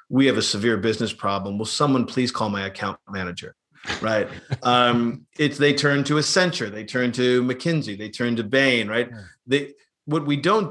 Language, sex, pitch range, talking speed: English, male, 115-165 Hz, 185 wpm